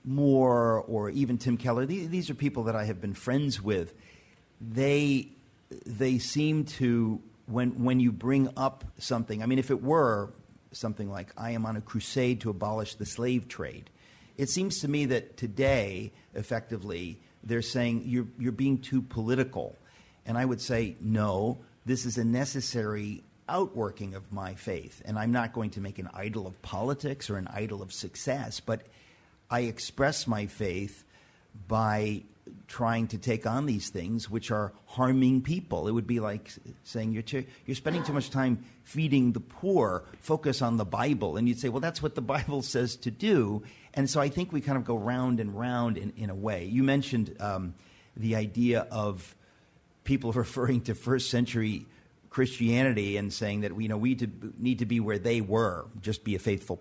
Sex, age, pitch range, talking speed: male, 50-69, 105-130 Hz, 185 wpm